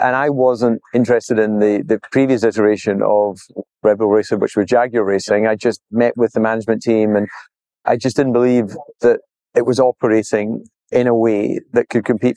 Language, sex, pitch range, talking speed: English, male, 110-125 Hz, 190 wpm